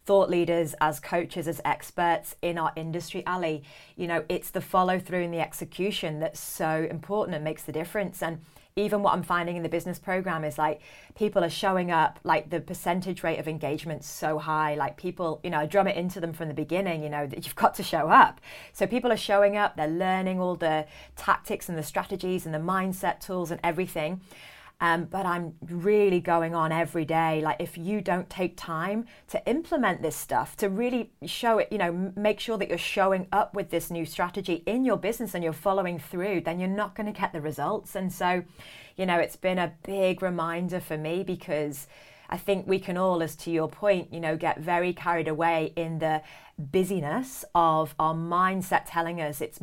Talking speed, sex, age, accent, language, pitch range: 210 wpm, female, 30-49, British, English, 155-185 Hz